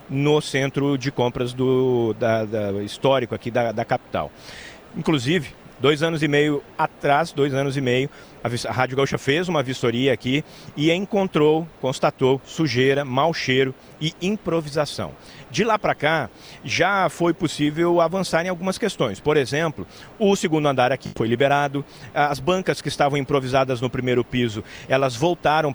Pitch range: 135-170 Hz